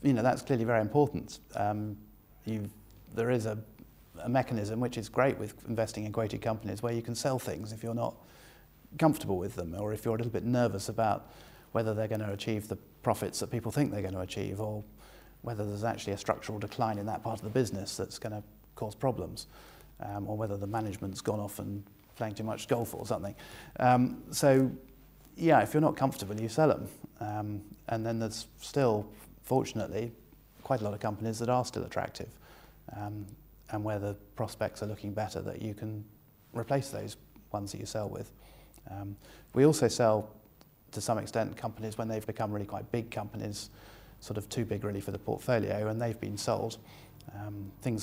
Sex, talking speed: male, 190 wpm